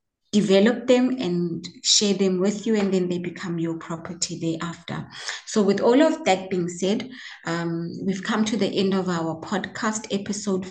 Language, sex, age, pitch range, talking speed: English, female, 20-39, 180-220 Hz, 175 wpm